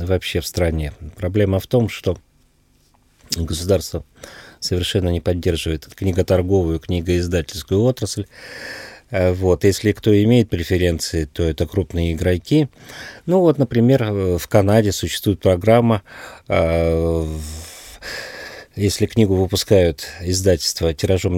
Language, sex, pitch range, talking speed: Russian, male, 85-115 Hz, 100 wpm